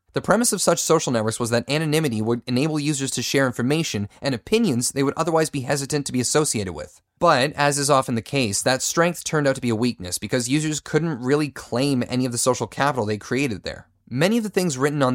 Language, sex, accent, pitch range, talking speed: English, male, American, 120-155 Hz, 235 wpm